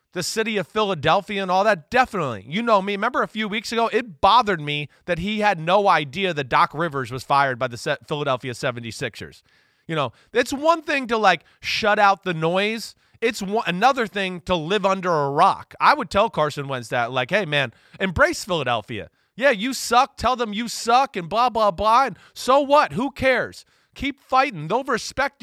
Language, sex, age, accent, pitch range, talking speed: English, male, 30-49, American, 135-200 Hz, 200 wpm